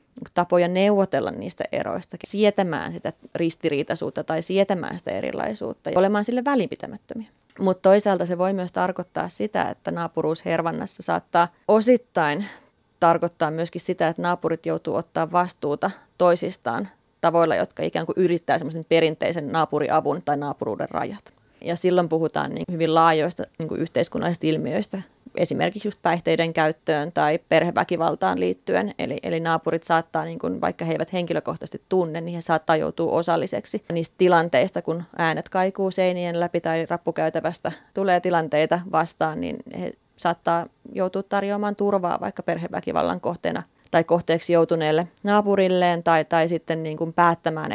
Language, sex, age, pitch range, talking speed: English, female, 30-49, 160-185 Hz, 140 wpm